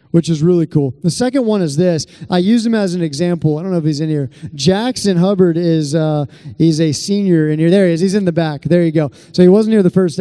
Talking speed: 275 wpm